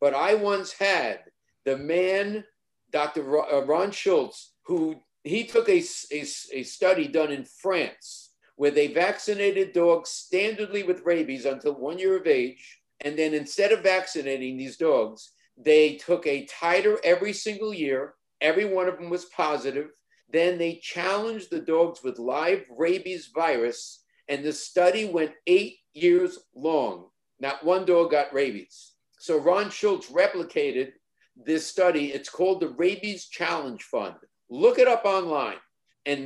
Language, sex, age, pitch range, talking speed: English, male, 50-69, 145-195 Hz, 145 wpm